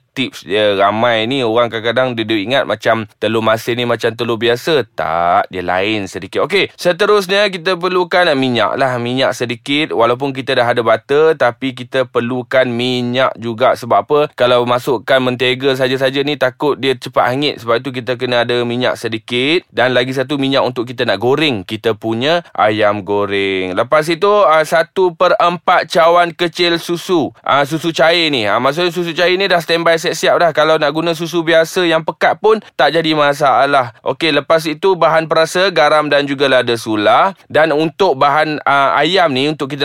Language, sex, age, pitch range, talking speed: Malay, male, 20-39, 120-160 Hz, 175 wpm